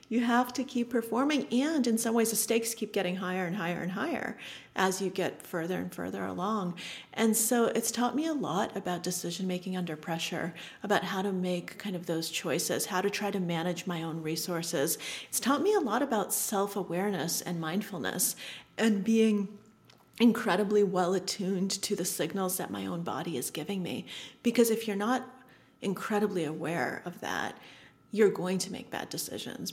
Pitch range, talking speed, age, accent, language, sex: 175-215 Hz, 180 wpm, 40-59, American, English, female